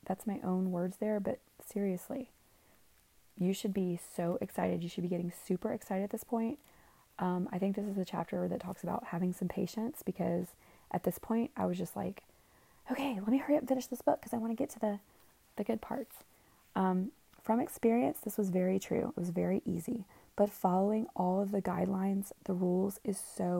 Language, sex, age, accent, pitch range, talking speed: English, female, 20-39, American, 185-220 Hz, 210 wpm